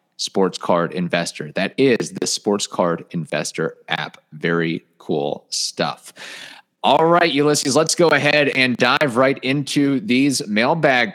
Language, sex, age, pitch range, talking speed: English, male, 30-49, 95-130 Hz, 135 wpm